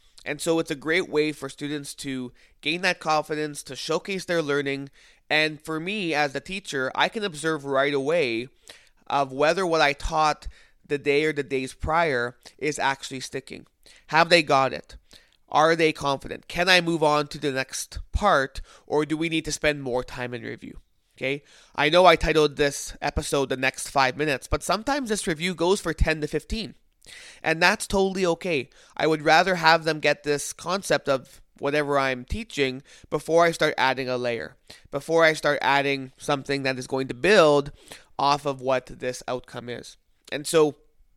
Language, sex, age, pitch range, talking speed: English, male, 20-39, 135-160 Hz, 185 wpm